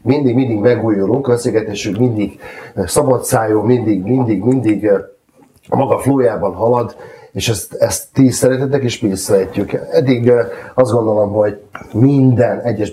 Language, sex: Hungarian, male